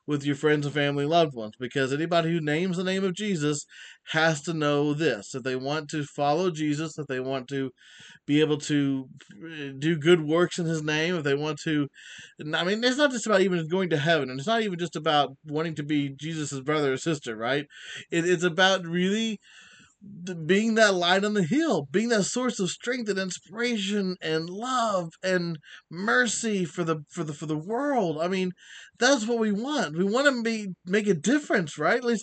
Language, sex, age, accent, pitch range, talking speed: English, male, 30-49, American, 150-205 Hz, 205 wpm